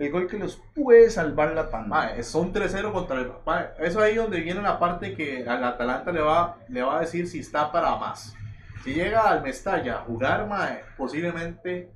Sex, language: male, Spanish